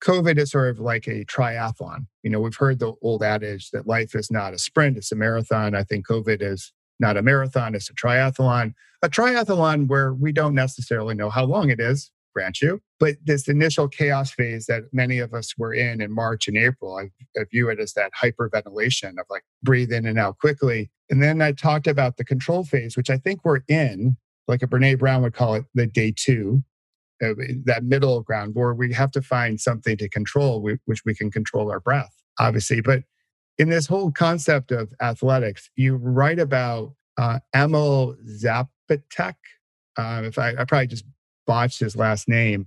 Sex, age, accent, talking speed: male, 40-59, American, 195 wpm